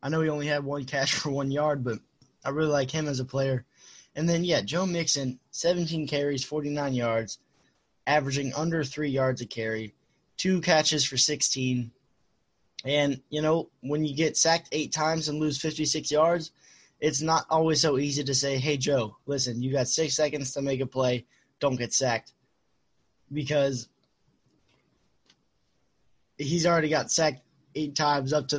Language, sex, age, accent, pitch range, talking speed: English, male, 20-39, American, 130-155 Hz, 170 wpm